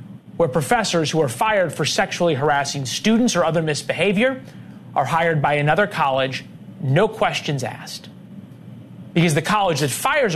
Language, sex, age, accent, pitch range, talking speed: English, male, 30-49, American, 150-200 Hz, 145 wpm